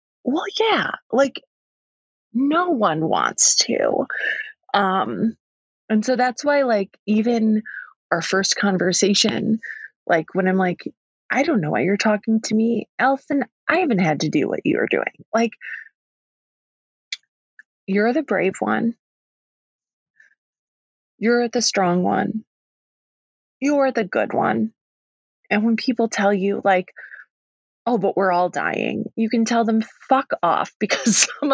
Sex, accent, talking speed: female, American, 140 wpm